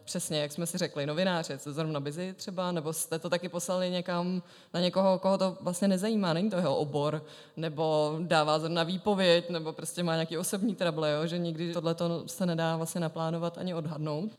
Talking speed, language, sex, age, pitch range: 190 wpm, Czech, female, 20-39, 165-180 Hz